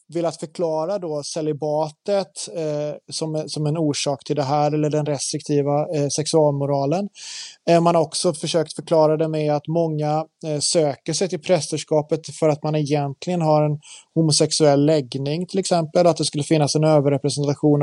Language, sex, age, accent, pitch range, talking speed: Swedish, male, 30-49, native, 145-170 Hz, 150 wpm